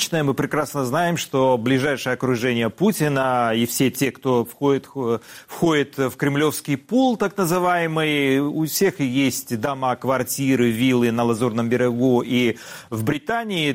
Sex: male